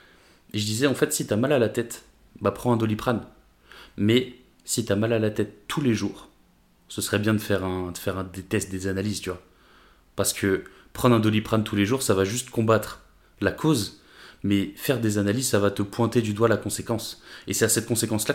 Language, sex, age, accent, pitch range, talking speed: French, male, 20-39, French, 95-115 Hz, 230 wpm